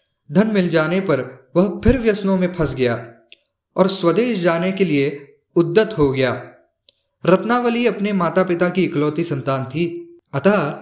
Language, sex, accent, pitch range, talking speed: Hindi, male, native, 140-195 Hz, 150 wpm